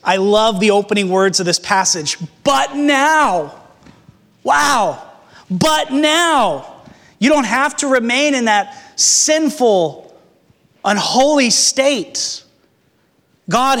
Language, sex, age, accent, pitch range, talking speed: English, male, 30-49, American, 180-245 Hz, 105 wpm